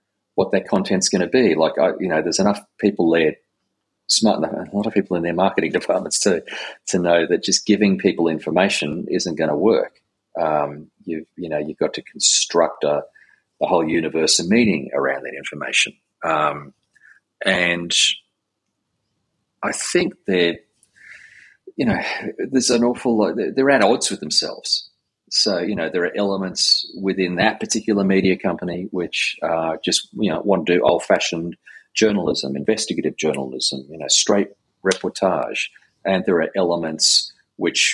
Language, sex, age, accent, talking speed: English, male, 30-49, Australian, 155 wpm